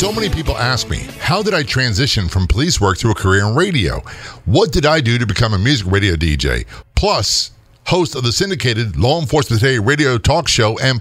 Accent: American